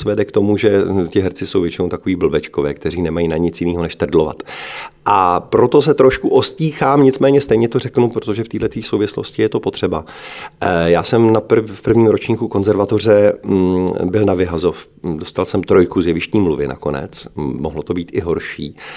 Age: 40-59